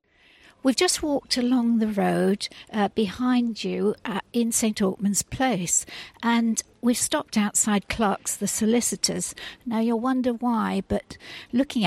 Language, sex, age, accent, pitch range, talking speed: English, female, 60-79, British, 195-245 Hz, 130 wpm